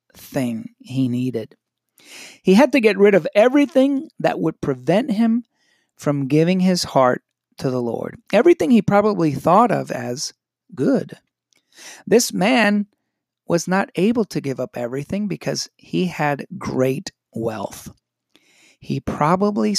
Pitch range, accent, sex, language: 130-190 Hz, American, male, English